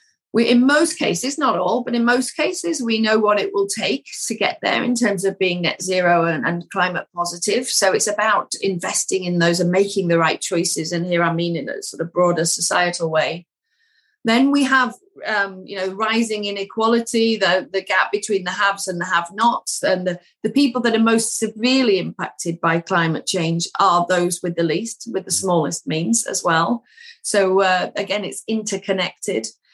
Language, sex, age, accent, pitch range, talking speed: English, female, 40-59, British, 180-225 Hz, 195 wpm